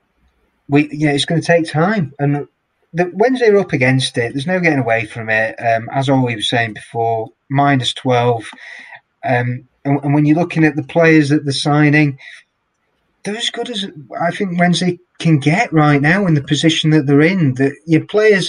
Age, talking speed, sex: 30-49, 200 wpm, male